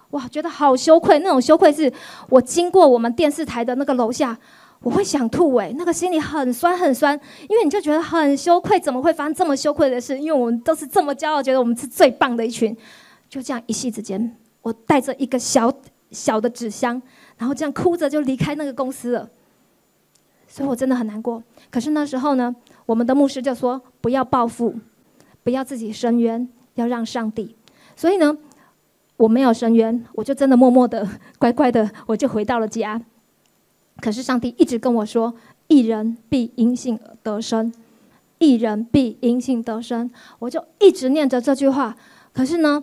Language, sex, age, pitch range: Chinese, female, 20-39, 235-295 Hz